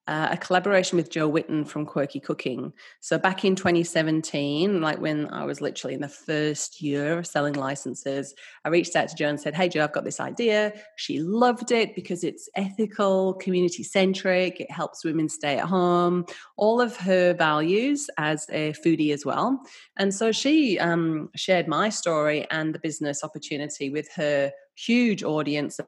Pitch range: 150-195 Hz